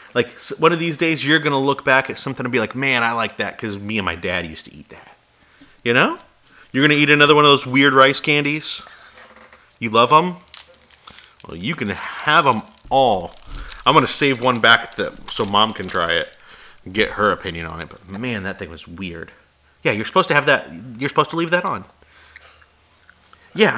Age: 30-49